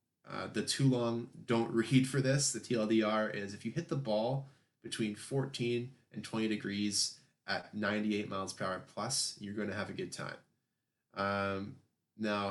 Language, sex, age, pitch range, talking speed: English, male, 20-39, 100-120 Hz, 165 wpm